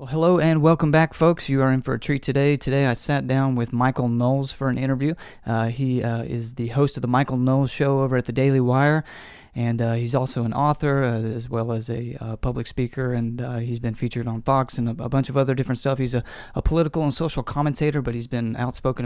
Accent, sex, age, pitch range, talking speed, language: American, male, 30-49, 115-135 Hz, 245 wpm, English